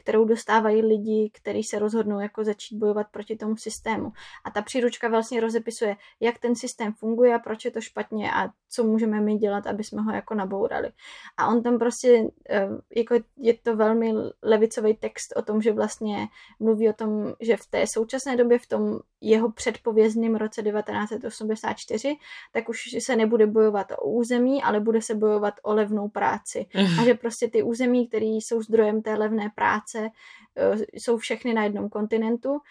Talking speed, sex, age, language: 170 wpm, female, 10-29, Slovak